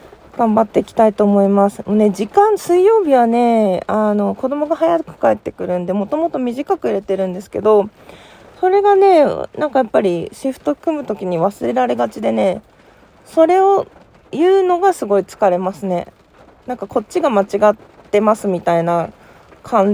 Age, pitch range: 20-39, 190-305 Hz